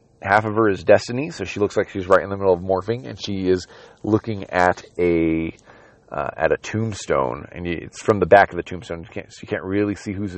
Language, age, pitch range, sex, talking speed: English, 30-49, 100-135 Hz, male, 235 wpm